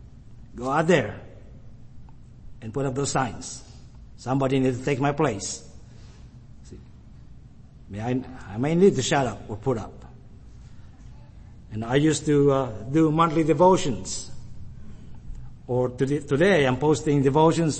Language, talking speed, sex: English, 130 wpm, male